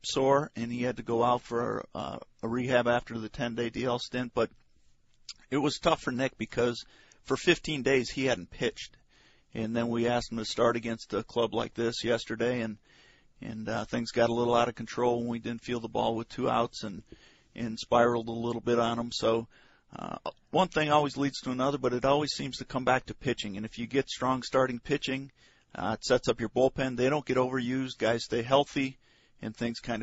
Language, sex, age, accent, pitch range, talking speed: English, male, 50-69, American, 115-130 Hz, 220 wpm